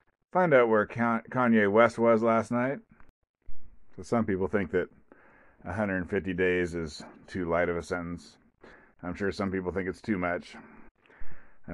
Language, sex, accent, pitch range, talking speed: English, male, American, 90-105 Hz, 150 wpm